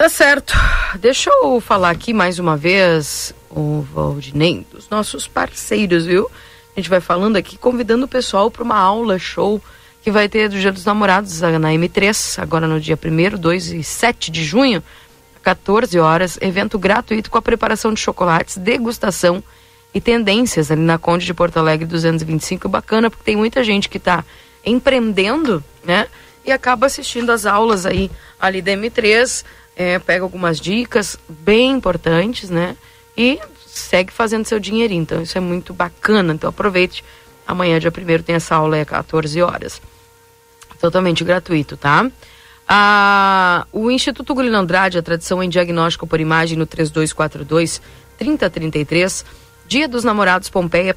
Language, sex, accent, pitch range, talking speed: Portuguese, female, Brazilian, 165-220 Hz, 155 wpm